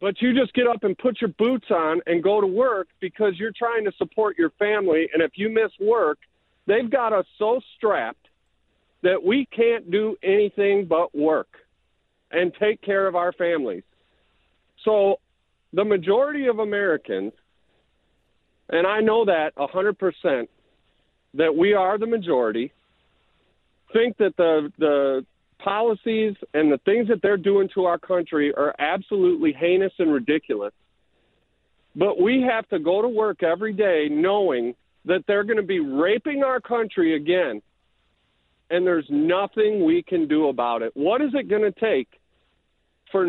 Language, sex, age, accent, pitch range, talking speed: English, male, 50-69, American, 155-220 Hz, 155 wpm